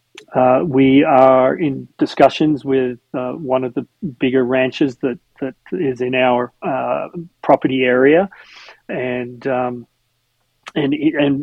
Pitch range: 130-155 Hz